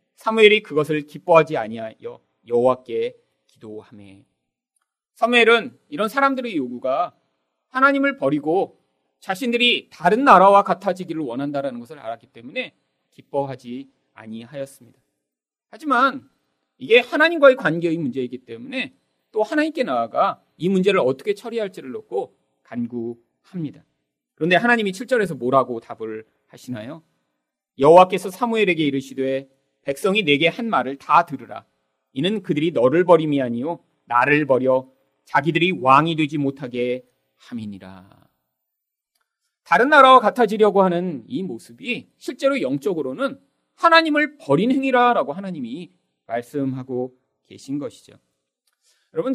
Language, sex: Korean, male